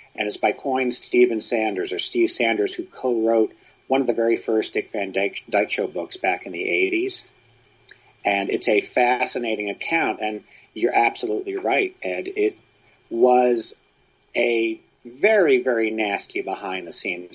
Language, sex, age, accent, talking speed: English, male, 40-59, American, 150 wpm